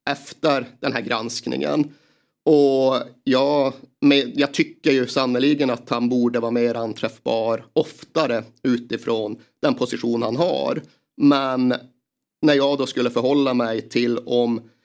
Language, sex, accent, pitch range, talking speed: Swedish, male, native, 120-145 Hz, 130 wpm